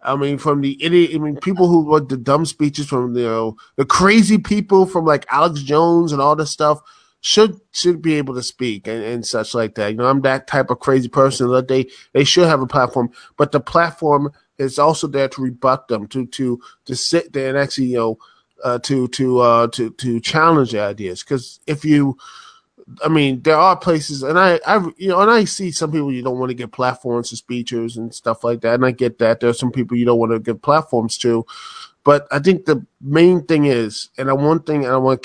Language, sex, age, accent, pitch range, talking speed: English, male, 20-39, American, 125-160 Hz, 240 wpm